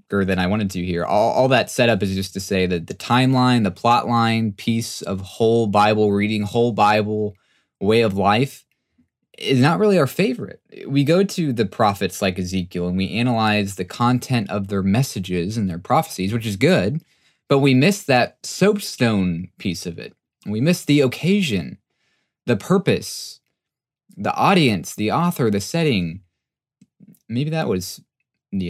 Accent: American